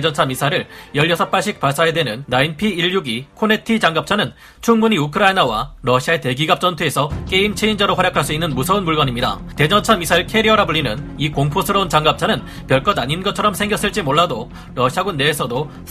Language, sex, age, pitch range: Korean, male, 30-49, 145-200 Hz